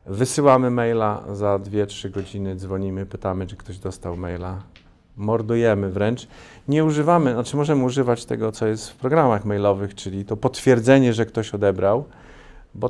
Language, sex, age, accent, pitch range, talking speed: Polish, male, 40-59, native, 100-130 Hz, 145 wpm